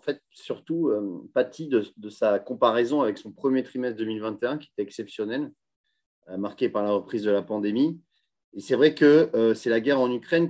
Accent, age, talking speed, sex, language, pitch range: French, 30-49, 195 wpm, male, French, 105-135 Hz